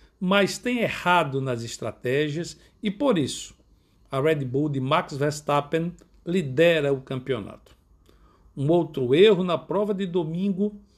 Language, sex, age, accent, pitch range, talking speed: Portuguese, male, 60-79, Brazilian, 130-185 Hz, 130 wpm